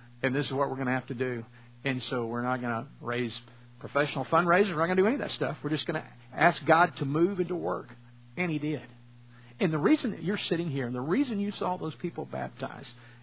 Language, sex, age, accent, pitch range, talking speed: English, male, 50-69, American, 120-175 Hz, 260 wpm